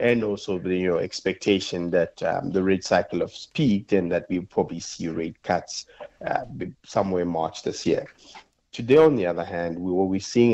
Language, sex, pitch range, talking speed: English, male, 90-100 Hz, 195 wpm